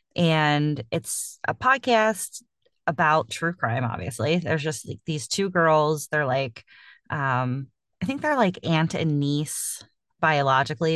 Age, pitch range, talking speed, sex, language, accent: 30-49, 145-200 Hz, 135 wpm, female, English, American